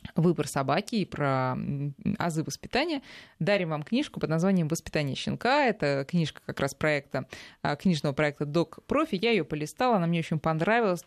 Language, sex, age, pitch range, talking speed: Russian, female, 20-39, 150-205 Hz, 150 wpm